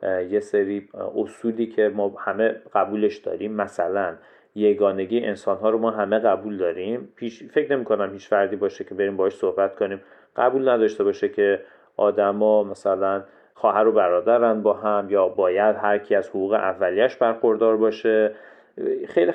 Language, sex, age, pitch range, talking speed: Persian, male, 40-59, 105-130 Hz, 145 wpm